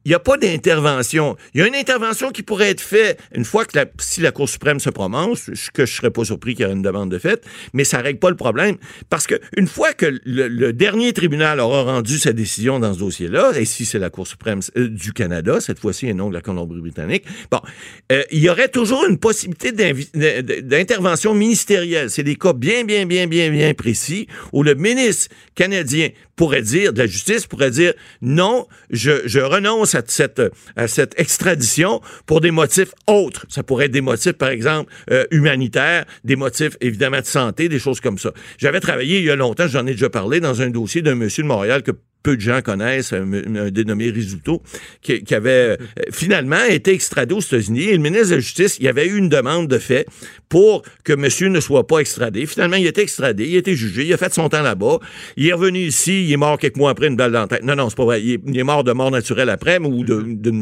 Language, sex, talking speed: French, male, 235 wpm